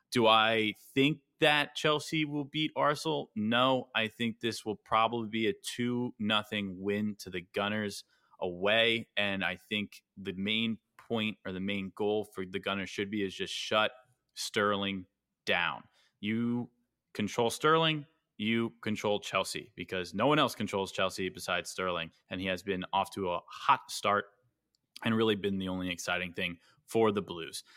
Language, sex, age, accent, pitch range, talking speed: English, male, 30-49, American, 100-120 Hz, 165 wpm